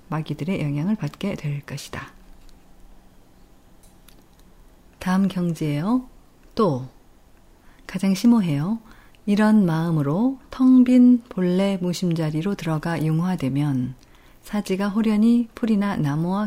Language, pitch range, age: Korean, 155-220 Hz, 40-59